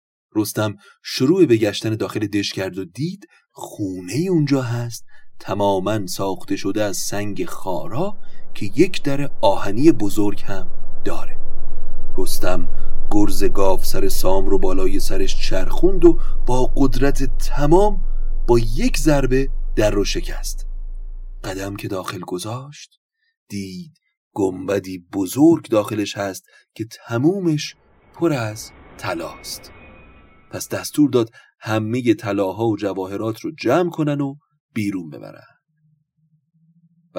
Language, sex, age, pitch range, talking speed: Persian, male, 30-49, 100-145 Hz, 120 wpm